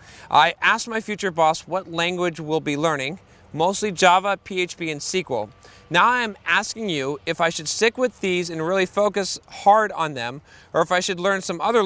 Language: English